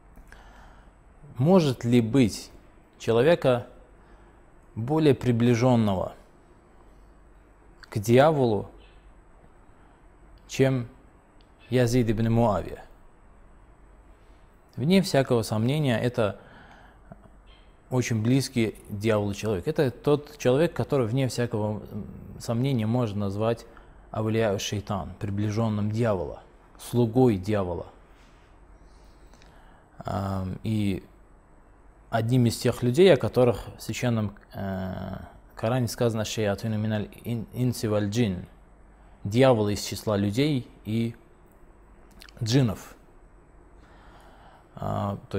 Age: 20-39